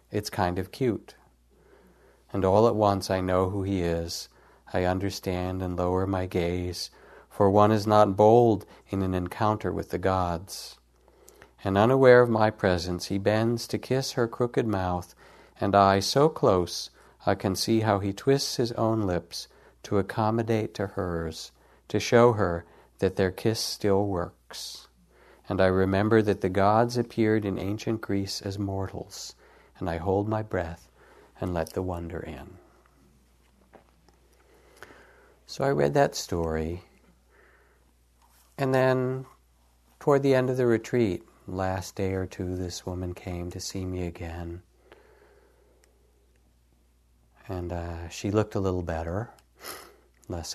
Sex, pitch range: male, 85-105 Hz